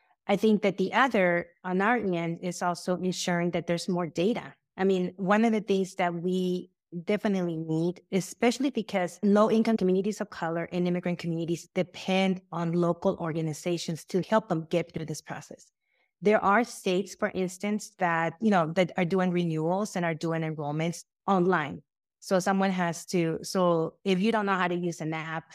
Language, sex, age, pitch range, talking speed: English, female, 30-49, 170-195 Hz, 180 wpm